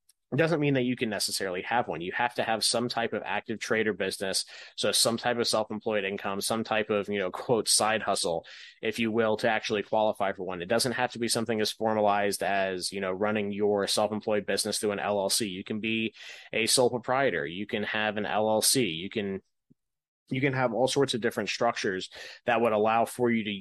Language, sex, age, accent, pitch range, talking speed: English, male, 20-39, American, 100-115 Hz, 220 wpm